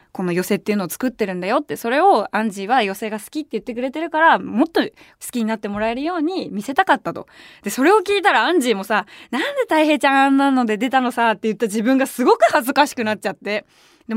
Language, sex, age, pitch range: Japanese, female, 20-39, 210-315 Hz